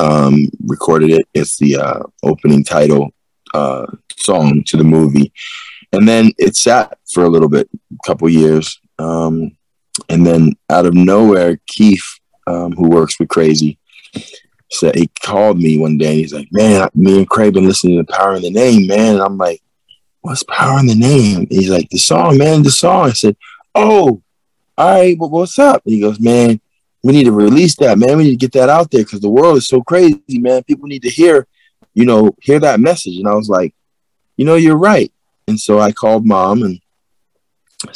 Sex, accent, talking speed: male, American, 205 wpm